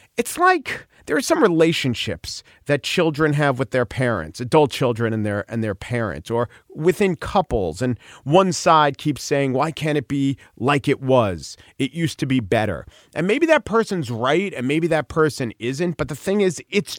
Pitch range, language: 110-165 Hz, English